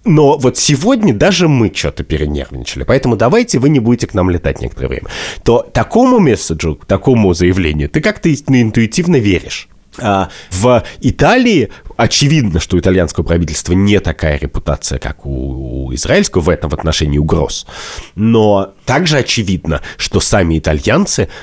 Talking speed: 135 wpm